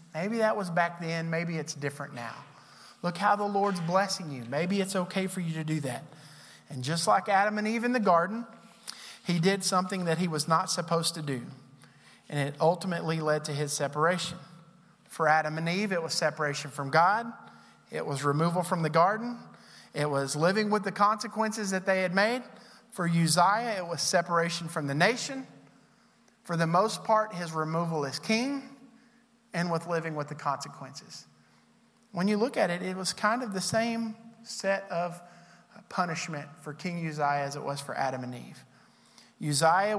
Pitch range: 150-195 Hz